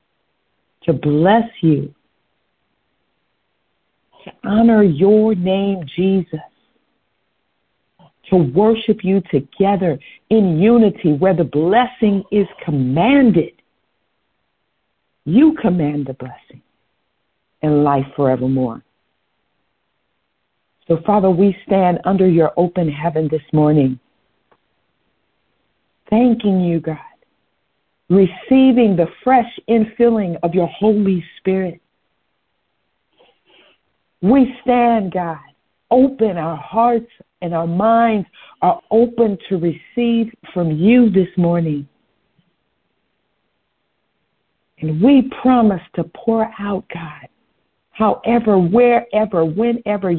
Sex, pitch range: female, 165-225 Hz